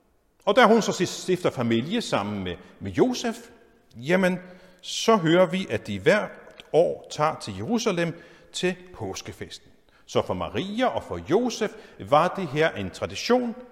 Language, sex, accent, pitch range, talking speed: Danish, male, native, 135-215 Hz, 150 wpm